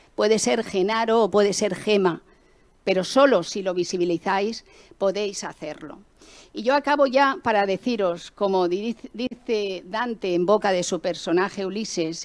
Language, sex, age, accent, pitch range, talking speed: Spanish, female, 50-69, Spanish, 175-215 Hz, 140 wpm